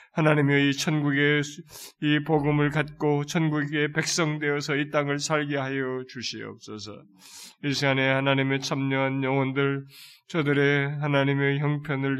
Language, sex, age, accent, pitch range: Korean, male, 20-39, native, 140-160 Hz